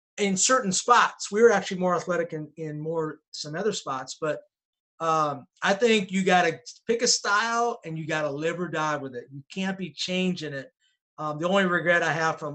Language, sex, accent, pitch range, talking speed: English, male, American, 150-185 Hz, 205 wpm